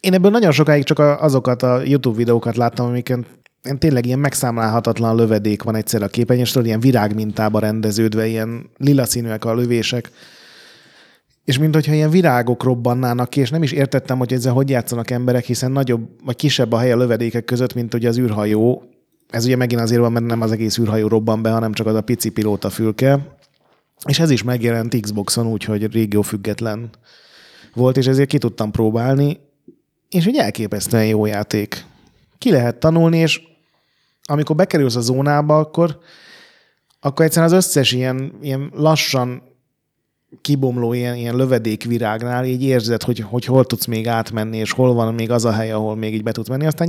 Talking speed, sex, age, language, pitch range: 175 wpm, male, 30-49, Hungarian, 115-140 Hz